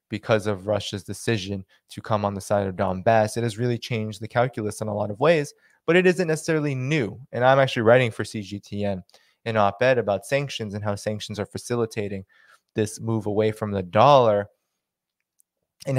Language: English